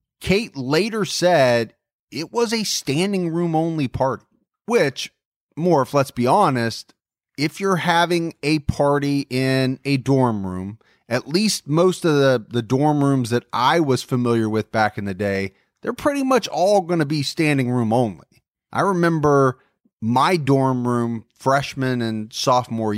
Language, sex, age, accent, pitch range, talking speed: English, male, 30-49, American, 120-170 Hz, 155 wpm